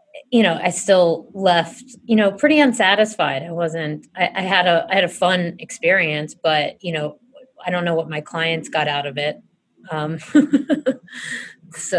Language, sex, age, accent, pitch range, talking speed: English, female, 30-49, American, 155-190 Hz, 175 wpm